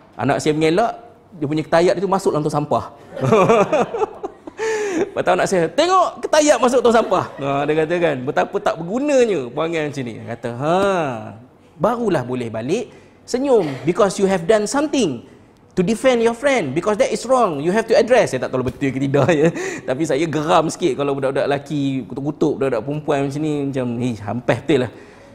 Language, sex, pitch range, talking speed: Malay, male, 145-235 Hz, 180 wpm